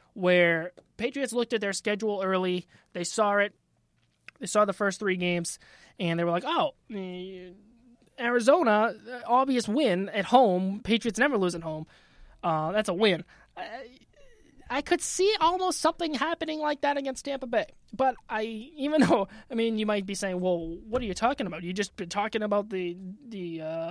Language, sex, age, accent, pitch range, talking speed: English, male, 20-39, American, 180-230 Hz, 175 wpm